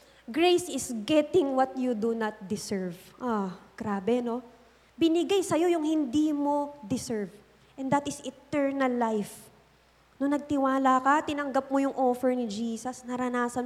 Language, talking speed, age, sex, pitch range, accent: English, 150 wpm, 20-39, female, 225-290 Hz, Filipino